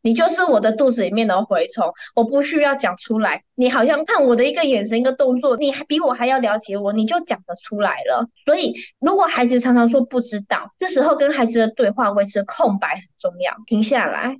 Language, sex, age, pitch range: Chinese, female, 20-39, 215-280 Hz